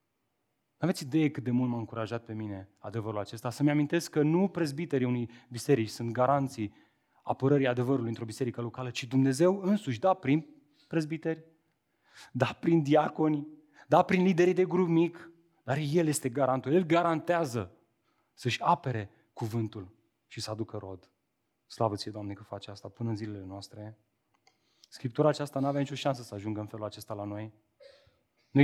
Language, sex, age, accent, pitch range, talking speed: Romanian, male, 30-49, native, 110-150 Hz, 165 wpm